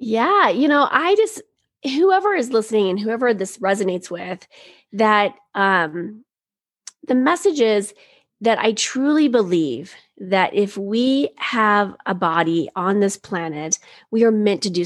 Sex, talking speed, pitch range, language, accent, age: female, 145 wpm, 195-230 Hz, English, American, 30-49